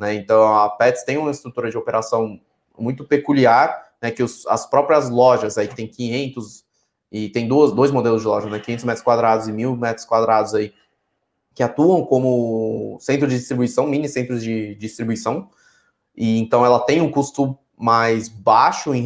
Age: 20-39